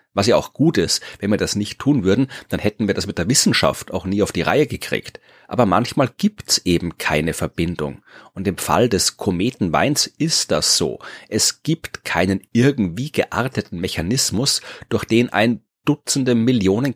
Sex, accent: male, German